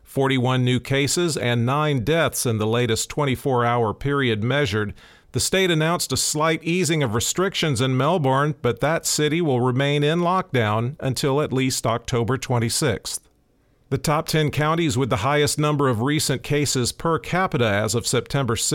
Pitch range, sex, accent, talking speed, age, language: 120-150 Hz, male, American, 160 wpm, 40-59, English